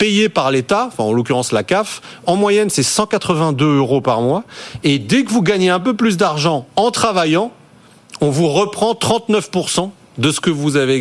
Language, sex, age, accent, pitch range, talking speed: French, male, 40-59, French, 130-185 Hz, 185 wpm